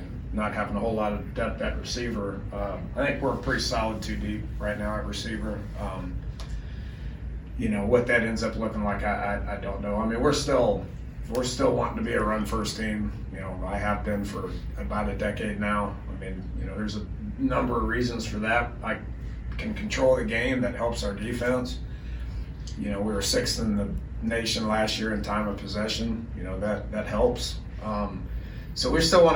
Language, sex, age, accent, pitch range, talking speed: English, male, 30-49, American, 100-115 Hz, 210 wpm